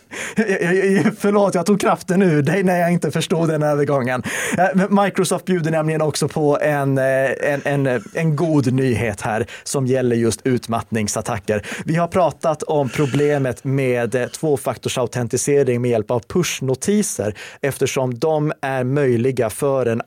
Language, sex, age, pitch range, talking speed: Swedish, male, 30-49, 120-155 Hz, 135 wpm